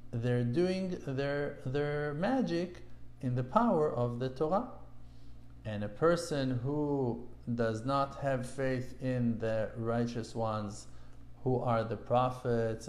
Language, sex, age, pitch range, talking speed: English, male, 50-69, 120-140 Hz, 125 wpm